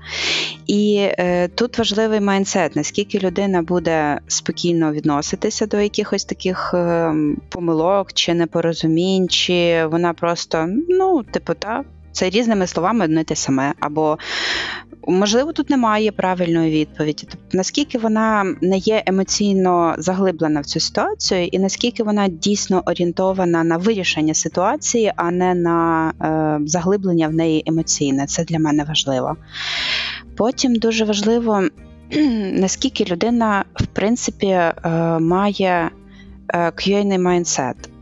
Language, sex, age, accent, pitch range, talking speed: Ukrainian, female, 20-39, native, 165-205 Hz, 125 wpm